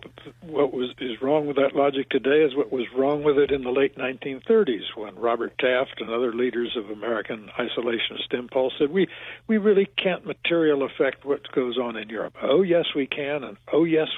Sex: male